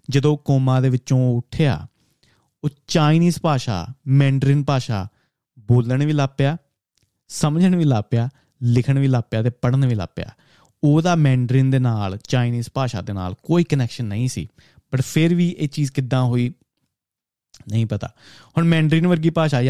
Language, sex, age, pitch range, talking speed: Punjabi, male, 30-49, 120-150 Hz, 145 wpm